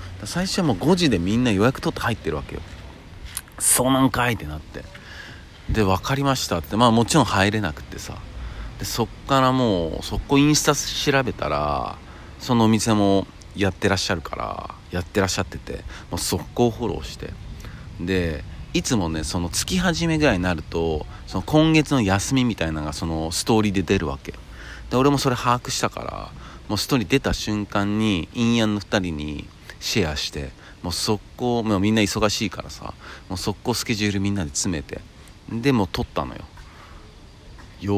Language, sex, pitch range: Japanese, male, 85-120 Hz